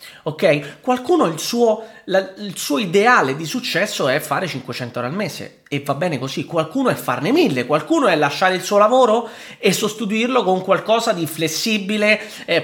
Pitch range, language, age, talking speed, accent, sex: 150-195 Hz, Italian, 30-49, 175 wpm, native, male